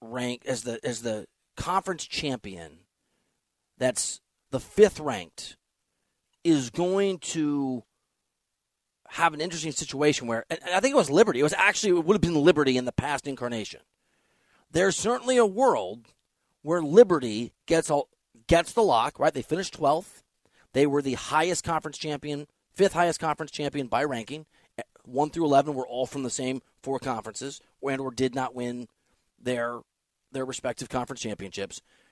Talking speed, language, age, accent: 155 wpm, English, 30-49, American